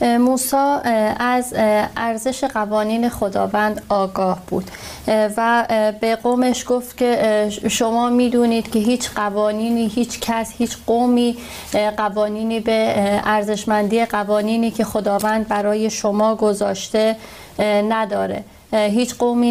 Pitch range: 210-230 Hz